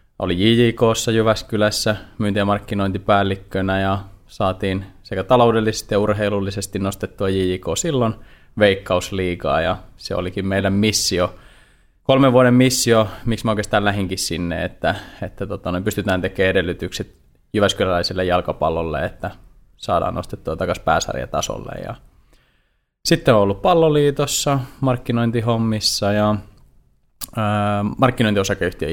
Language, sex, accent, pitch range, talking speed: Finnish, male, native, 95-110 Hz, 105 wpm